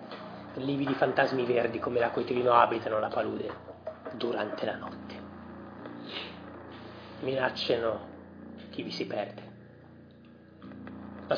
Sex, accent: male, native